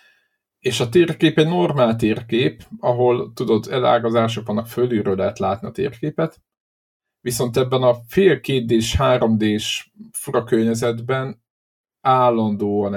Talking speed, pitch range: 105 wpm, 105-150 Hz